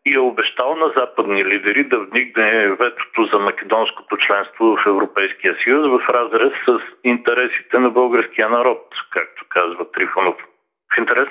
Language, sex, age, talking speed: Bulgarian, male, 50-69, 145 wpm